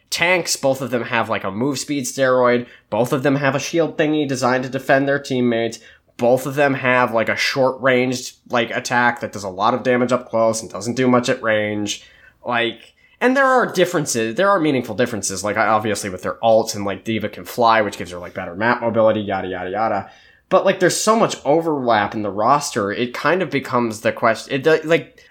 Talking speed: 215 wpm